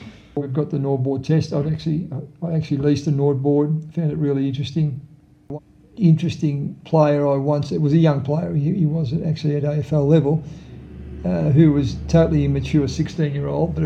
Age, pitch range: 50-69, 140-160 Hz